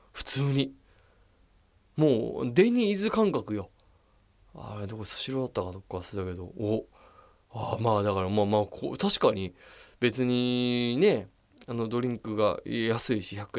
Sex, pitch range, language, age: male, 100-130 Hz, Japanese, 20-39